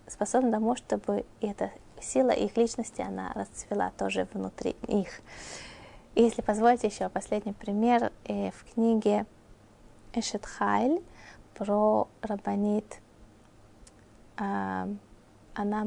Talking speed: 85 wpm